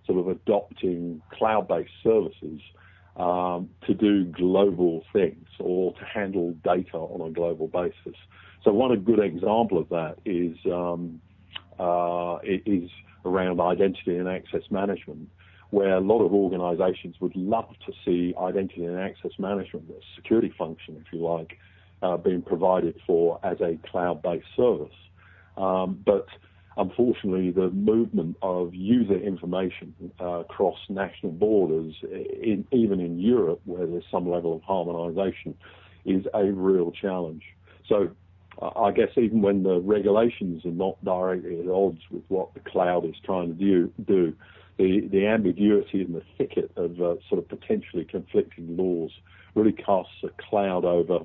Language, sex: English, male